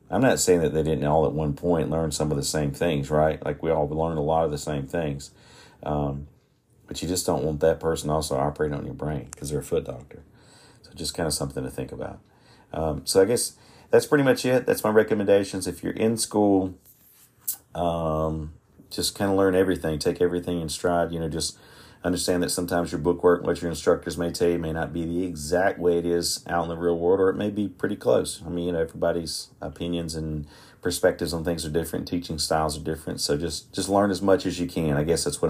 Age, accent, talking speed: 40-59, American, 240 wpm